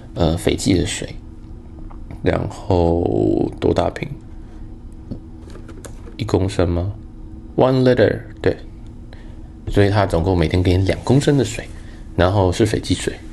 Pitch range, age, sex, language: 85-110 Hz, 20-39, male, Chinese